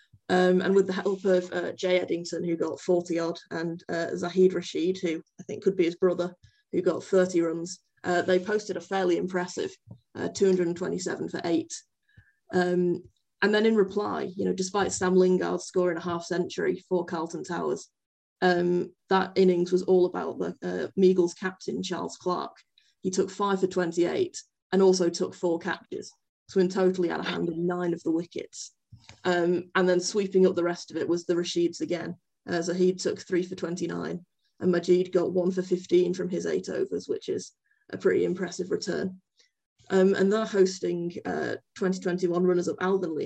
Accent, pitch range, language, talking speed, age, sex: British, 175-190 Hz, English, 185 wpm, 20-39, female